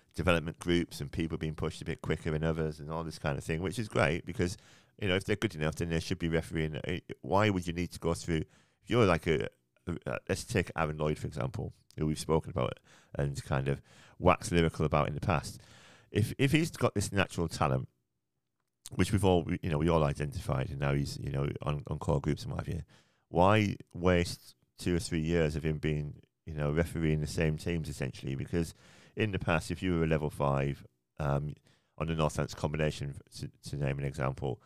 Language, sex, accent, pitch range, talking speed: English, male, British, 75-90 Hz, 215 wpm